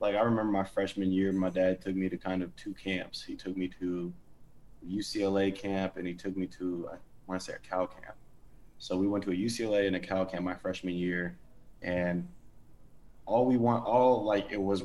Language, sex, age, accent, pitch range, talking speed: English, male, 20-39, American, 95-100 Hz, 220 wpm